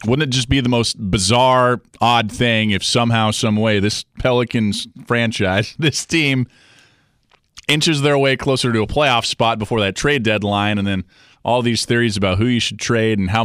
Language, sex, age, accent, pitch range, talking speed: English, male, 30-49, American, 115-160 Hz, 185 wpm